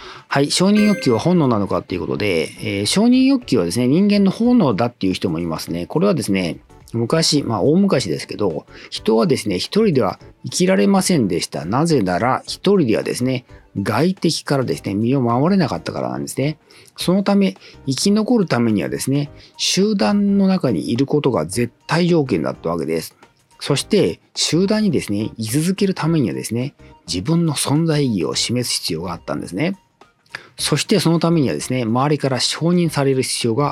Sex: male